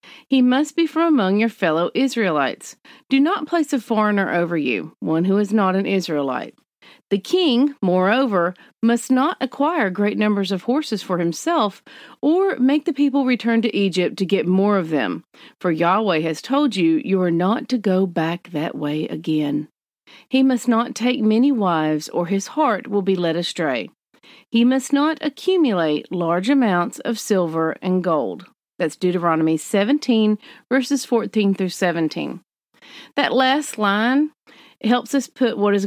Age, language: 40-59, English